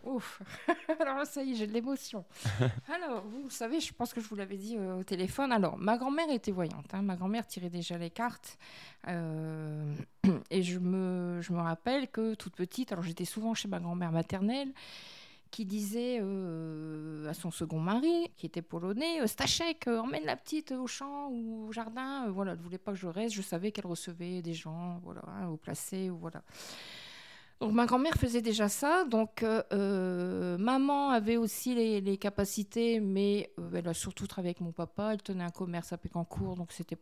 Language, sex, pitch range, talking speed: French, female, 180-225 Hz, 195 wpm